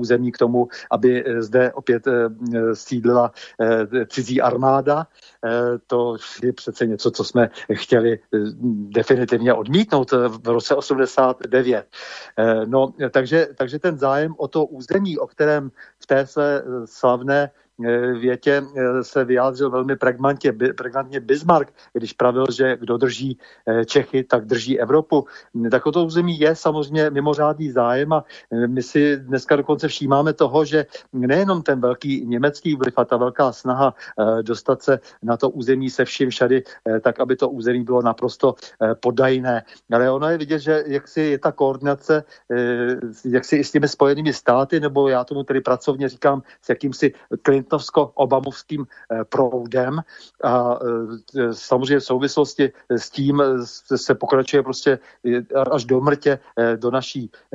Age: 50-69